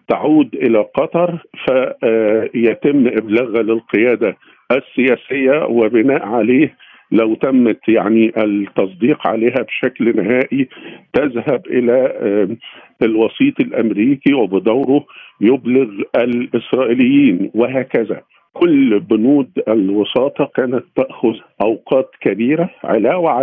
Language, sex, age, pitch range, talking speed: Arabic, male, 50-69, 110-145 Hz, 80 wpm